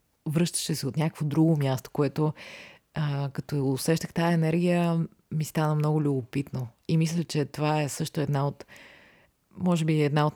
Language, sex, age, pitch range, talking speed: Bulgarian, female, 30-49, 135-165 Hz, 160 wpm